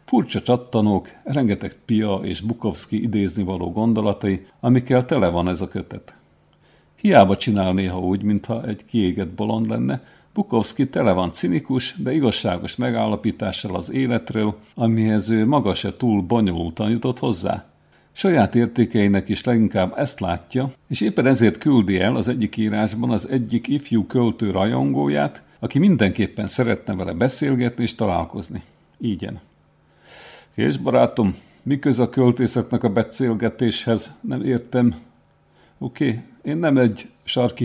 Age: 50-69